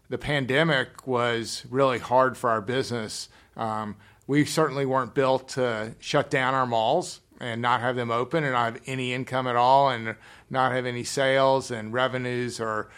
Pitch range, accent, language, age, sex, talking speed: 115-135 Hz, American, English, 50-69, male, 175 wpm